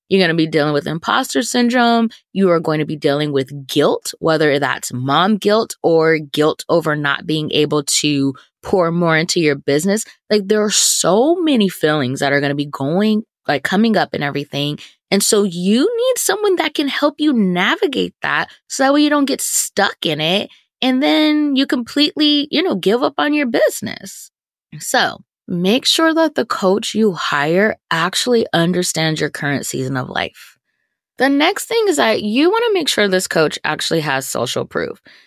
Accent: American